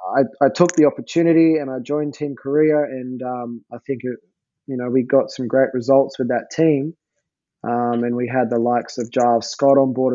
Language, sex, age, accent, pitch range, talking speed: English, male, 20-39, Australian, 115-135 Hz, 205 wpm